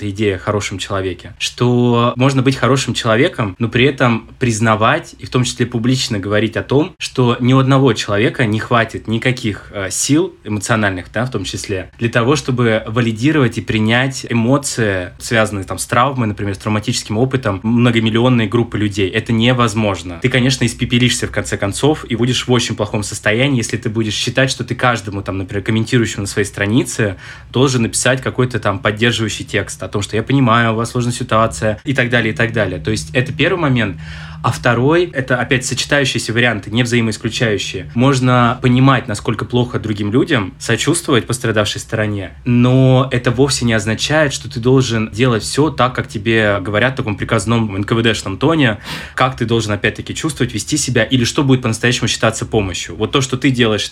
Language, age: Russian, 20-39